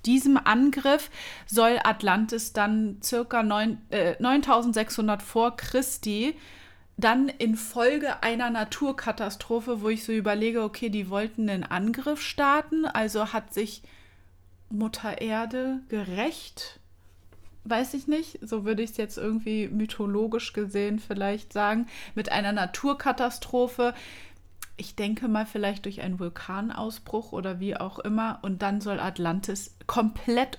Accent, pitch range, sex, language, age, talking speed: German, 195-245 Hz, female, German, 30-49, 120 wpm